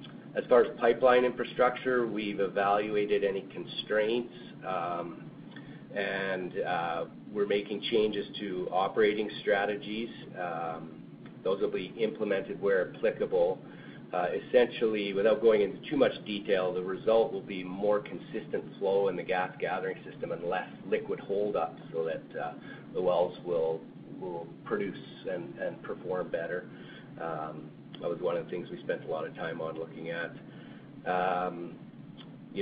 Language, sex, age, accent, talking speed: English, male, 40-59, American, 145 wpm